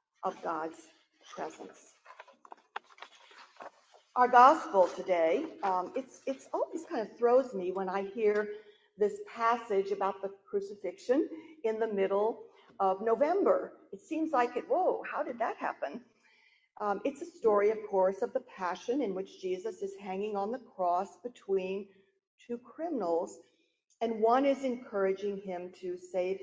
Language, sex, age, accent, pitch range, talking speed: English, female, 50-69, American, 195-320 Hz, 145 wpm